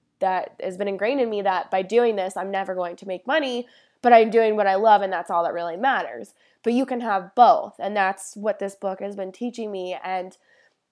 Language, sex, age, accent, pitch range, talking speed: English, female, 20-39, American, 190-230 Hz, 235 wpm